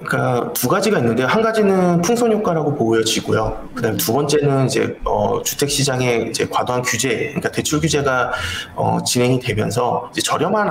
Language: Korean